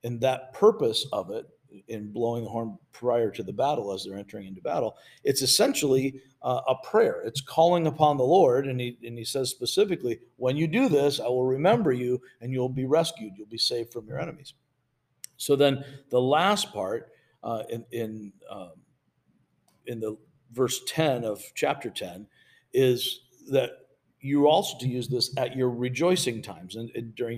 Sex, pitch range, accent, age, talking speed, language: male, 115-145 Hz, American, 50-69, 180 wpm, English